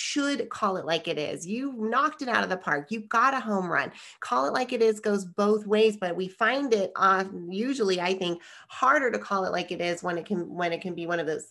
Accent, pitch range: American, 180-220 Hz